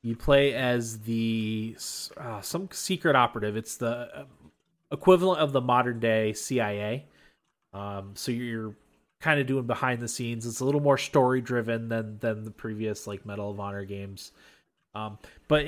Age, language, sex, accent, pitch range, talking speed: 30-49, English, male, American, 105-130 Hz, 170 wpm